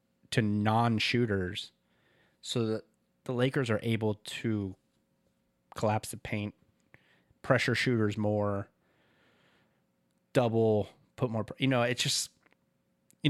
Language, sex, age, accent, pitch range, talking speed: English, male, 30-49, American, 110-135 Hz, 110 wpm